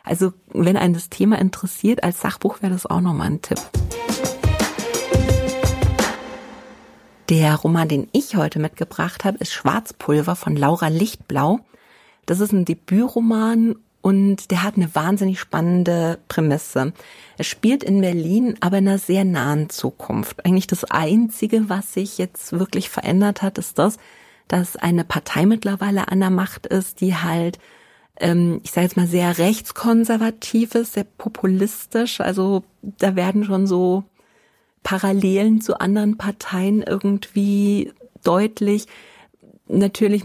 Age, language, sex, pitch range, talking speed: 40-59, German, female, 175-205 Hz, 130 wpm